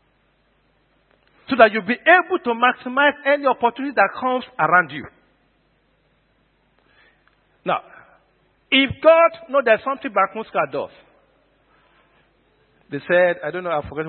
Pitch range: 160-255 Hz